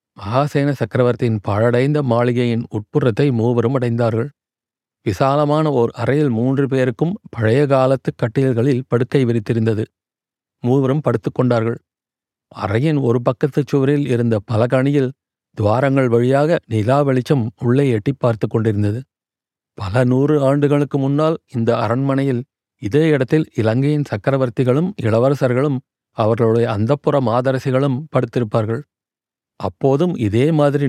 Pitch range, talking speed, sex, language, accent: 115-140 Hz, 95 wpm, male, Tamil, native